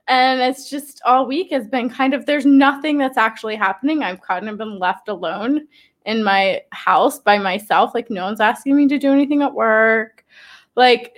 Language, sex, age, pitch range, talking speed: English, female, 20-39, 220-265 Hz, 195 wpm